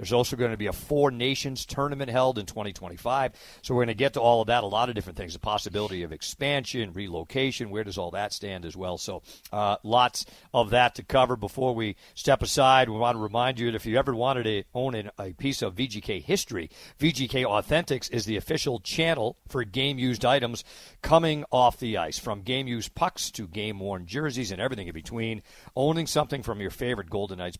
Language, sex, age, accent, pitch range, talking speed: English, male, 50-69, American, 105-135 Hz, 210 wpm